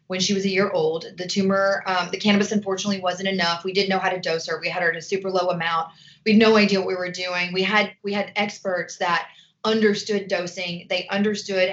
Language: English